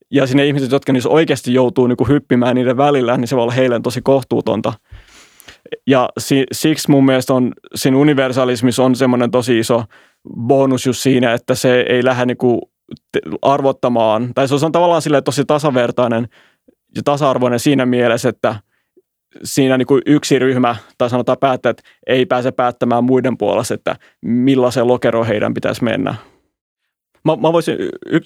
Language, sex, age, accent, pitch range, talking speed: Finnish, male, 20-39, native, 120-135 Hz, 145 wpm